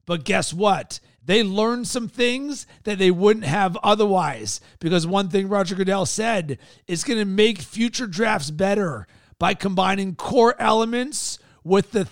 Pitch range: 175-215 Hz